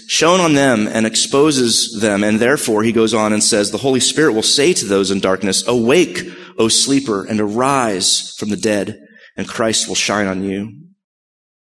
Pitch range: 100-125 Hz